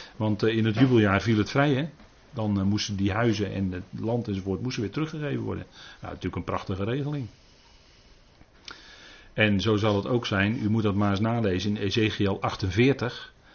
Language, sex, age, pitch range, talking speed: Dutch, male, 40-59, 100-120 Hz, 165 wpm